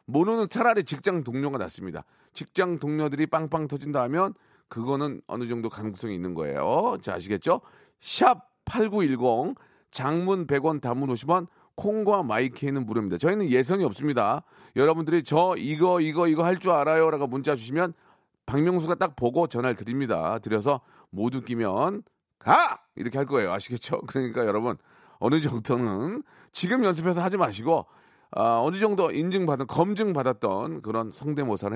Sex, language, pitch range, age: male, Korean, 125-180 Hz, 40-59